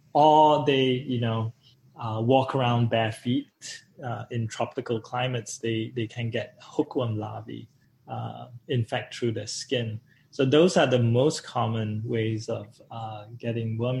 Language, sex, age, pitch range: English, male, 20-39, 115-135 Hz